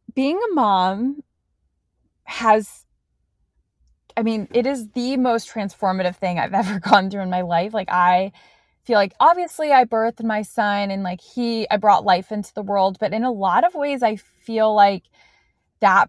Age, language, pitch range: 20-39, English, 190-235 Hz